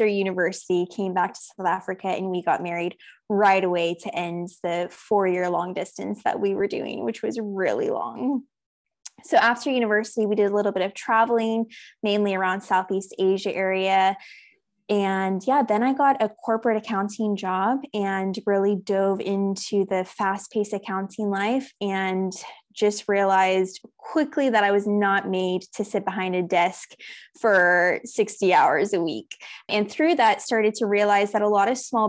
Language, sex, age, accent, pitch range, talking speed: English, female, 20-39, American, 190-220 Hz, 165 wpm